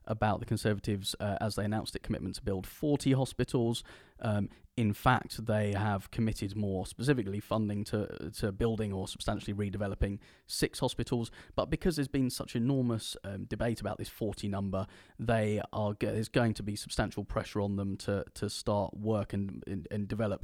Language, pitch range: English, 95-110 Hz